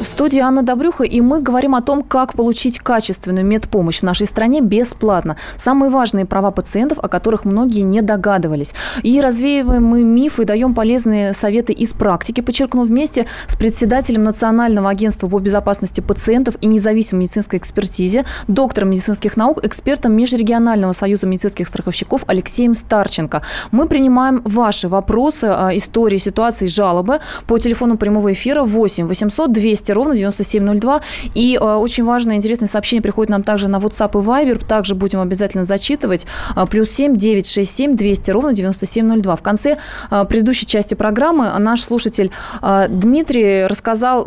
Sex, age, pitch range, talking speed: female, 20-39, 200-245 Hz, 150 wpm